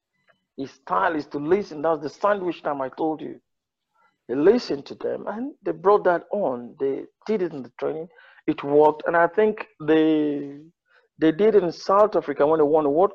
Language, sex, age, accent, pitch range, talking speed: English, male, 50-69, Nigerian, 145-240 Hz, 200 wpm